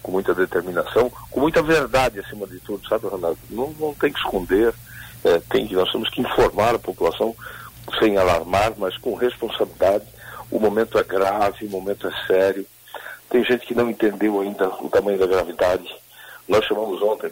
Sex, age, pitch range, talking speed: male, 60-79, 105-155 Hz, 175 wpm